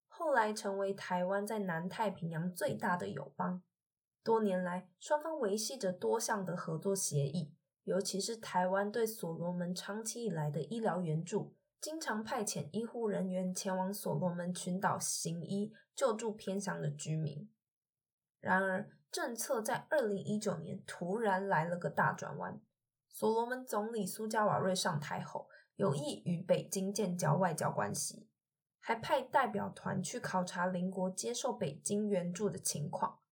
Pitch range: 180-215 Hz